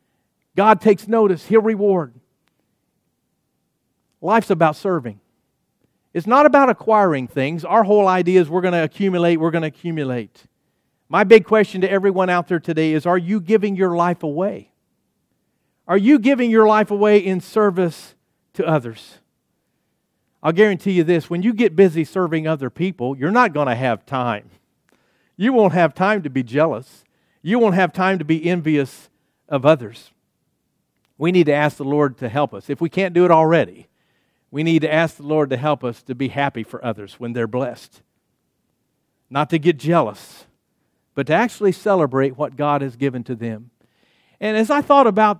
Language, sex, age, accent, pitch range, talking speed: English, male, 50-69, American, 145-195 Hz, 175 wpm